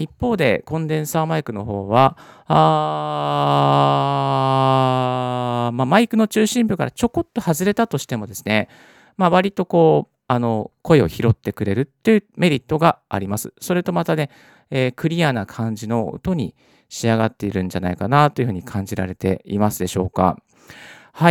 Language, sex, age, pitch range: Japanese, male, 40-59, 105-165 Hz